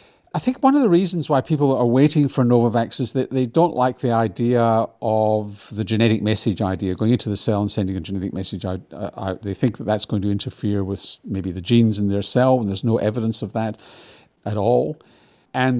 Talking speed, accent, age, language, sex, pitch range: 220 wpm, British, 50-69, English, male, 100-125 Hz